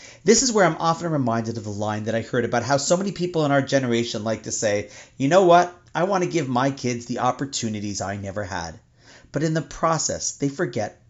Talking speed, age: 230 wpm, 30-49